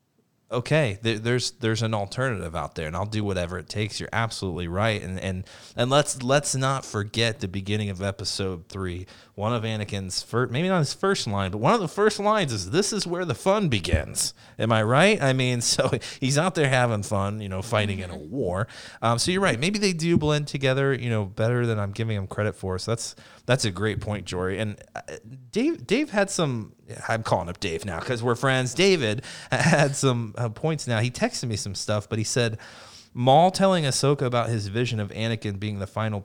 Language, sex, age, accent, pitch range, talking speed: English, male, 30-49, American, 100-130 Hz, 215 wpm